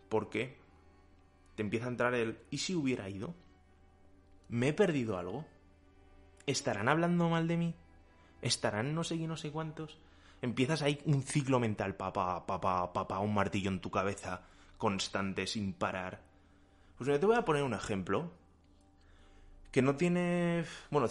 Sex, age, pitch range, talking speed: male, 20-39, 95-125 Hz, 160 wpm